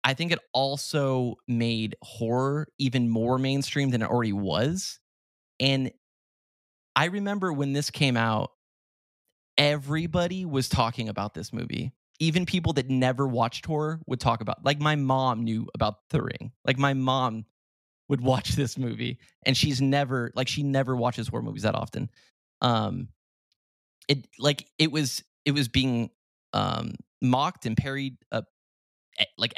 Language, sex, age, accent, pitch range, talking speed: English, male, 20-39, American, 115-145 Hz, 150 wpm